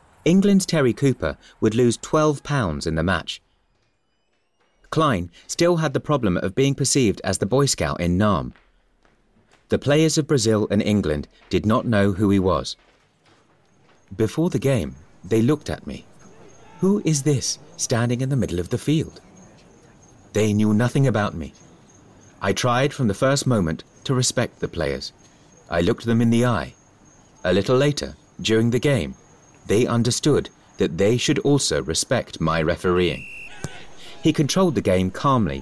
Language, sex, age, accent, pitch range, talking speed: English, male, 30-49, British, 100-140 Hz, 160 wpm